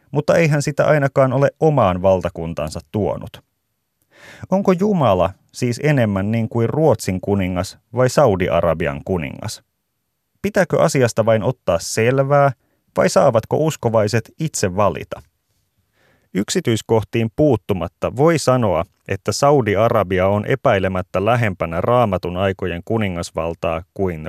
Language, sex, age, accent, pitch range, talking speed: Finnish, male, 30-49, native, 95-140 Hz, 105 wpm